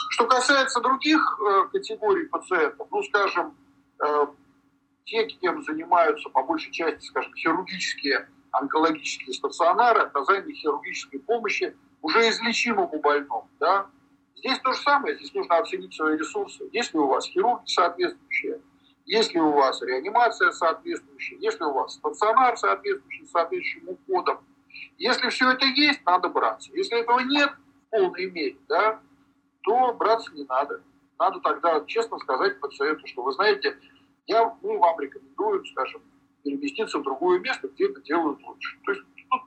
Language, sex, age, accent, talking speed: Russian, male, 50-69, native, 140 wpm